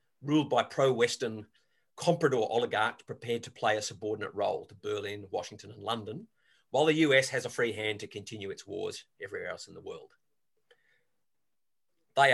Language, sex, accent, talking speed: English, male, Australian, 160 wpm